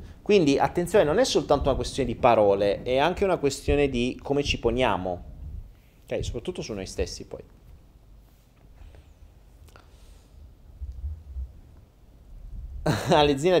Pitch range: 105-155 Hz